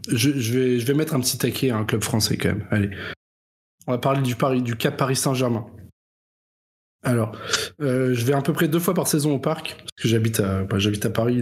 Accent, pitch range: French, 110-140 Hz